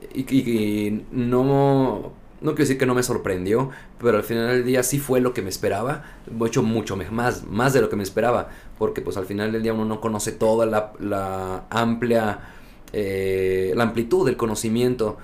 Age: 30-49